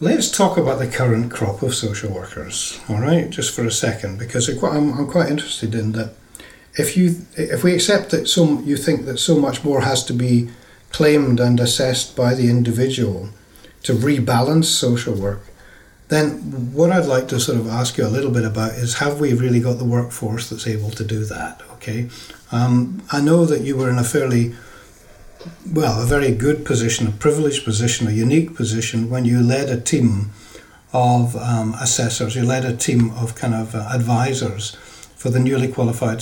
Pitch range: 115-135 Hz